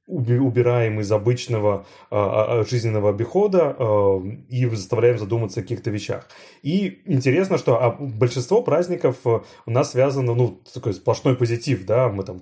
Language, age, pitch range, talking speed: Russian, 30-49, 115-140 Hz, 120 wpm